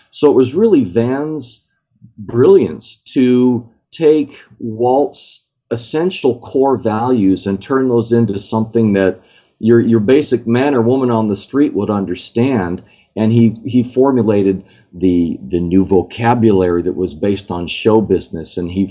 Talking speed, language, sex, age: 145 wpm, English, male, 40-59